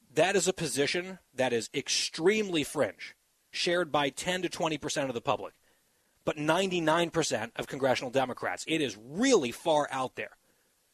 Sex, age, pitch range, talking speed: male, 40-59, 140-190 Hz, 160 wpm